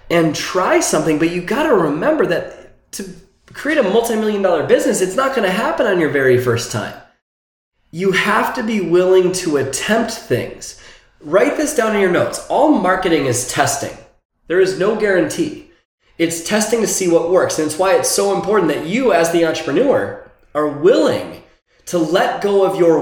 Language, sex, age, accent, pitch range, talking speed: English, male, 20-39, American, 160-235 Hz, 185 wpm